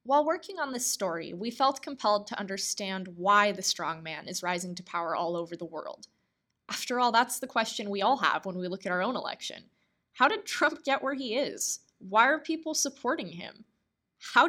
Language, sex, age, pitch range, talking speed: English, female, 20-39, 185-250 Hz, 205 wpm